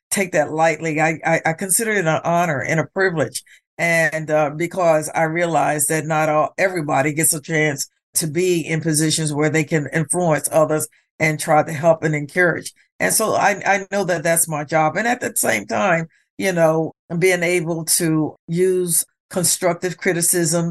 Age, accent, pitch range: 50-69, American, 155-180 Hz